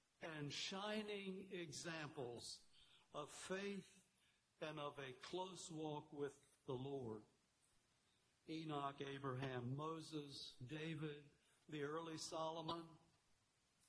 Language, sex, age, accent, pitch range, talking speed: English, male, 60-79, American, 140-175 Hz, 85 wpm